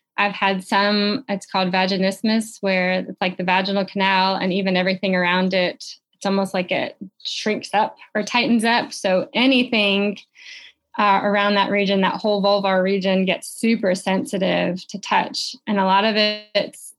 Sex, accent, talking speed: female, American, 165 wpm